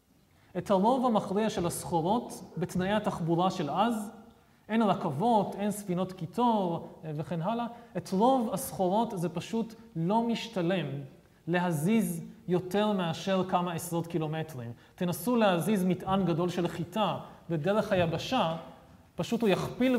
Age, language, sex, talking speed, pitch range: 30-49, Hebrew, male, 120 wpm, 170-215 Hz